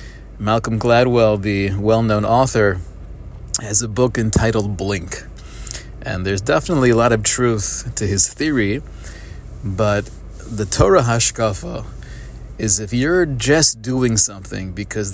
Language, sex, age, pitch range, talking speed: English, male, 30-49, 100-115 Hz, 125 wpm